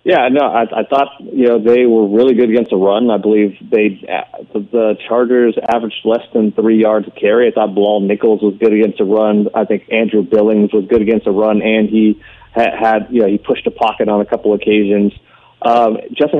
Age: 30-49